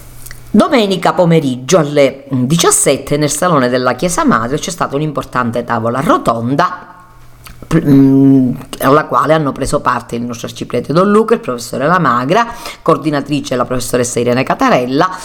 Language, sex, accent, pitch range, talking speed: Italian, female, native, 130-155 Hz, 130 wpm